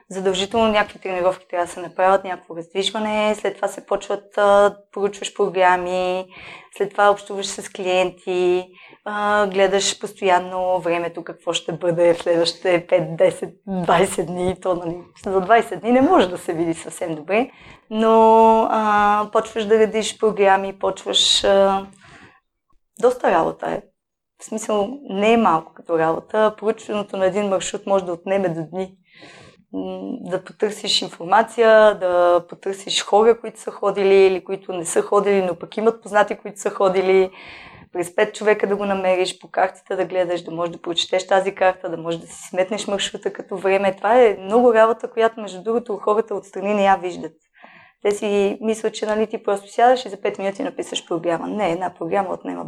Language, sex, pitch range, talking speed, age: Bulgarian, female, 185-215 Hz, 165 wpm, 20-39